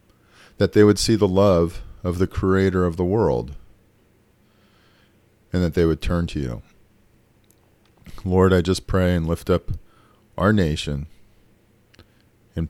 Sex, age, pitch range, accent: male, 40-59, 80-110 Hz, American